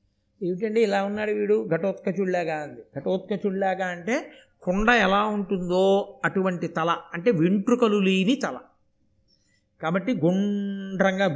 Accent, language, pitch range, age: native, Telugu, 165-220 Hz, 50-69